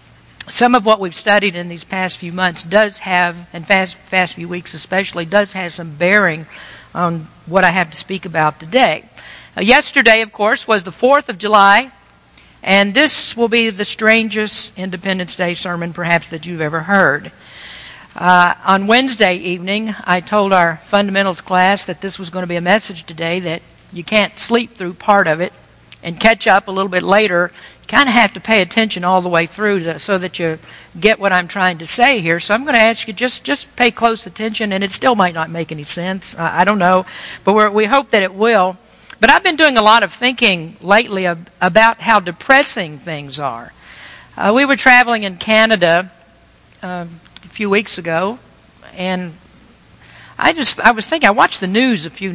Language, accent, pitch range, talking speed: English, American, 175-220 Hz, 205 wpm